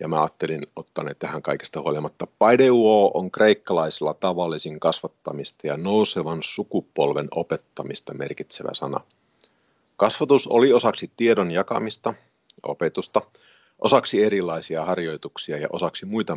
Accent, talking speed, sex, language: native, 110 wpm, male, Finnish